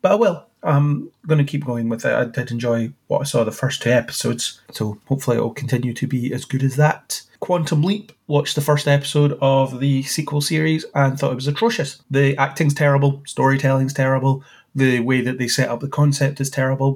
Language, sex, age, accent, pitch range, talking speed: English, male, 30-49, British, 125-145 Hz, 215 wpm